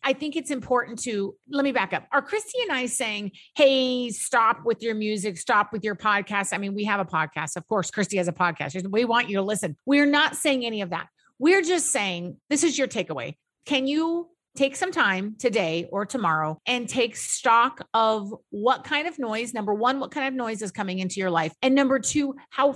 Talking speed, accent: 220 wpm, American